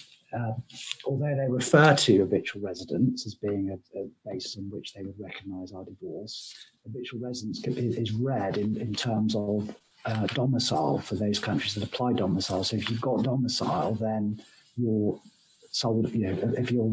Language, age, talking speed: English, 50-69, 165 wpm